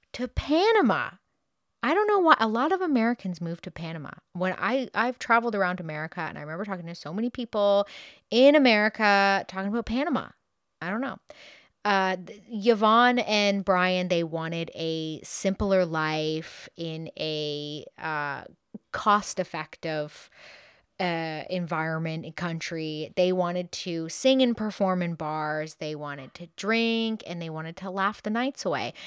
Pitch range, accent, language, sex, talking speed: 165-225 Hz, American, English, female, 150 wpm